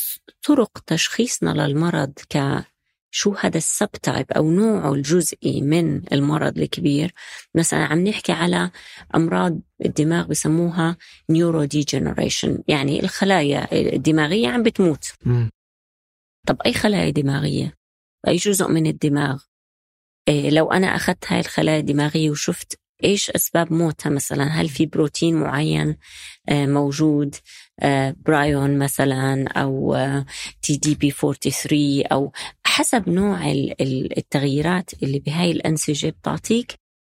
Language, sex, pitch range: Arabic, female, 140-170 Hz